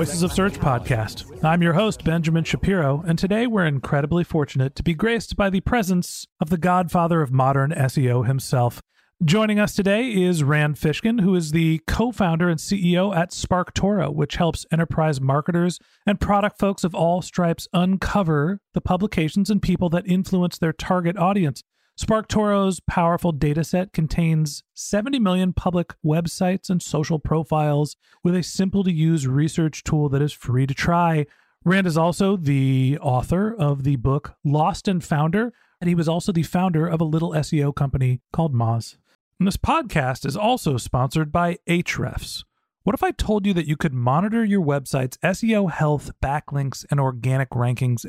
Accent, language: American, English